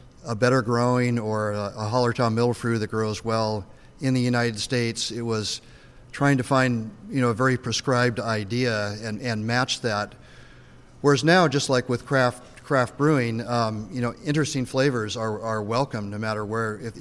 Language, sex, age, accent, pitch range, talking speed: English, male, 40-59, American, 110-130 Hz, 180 wpm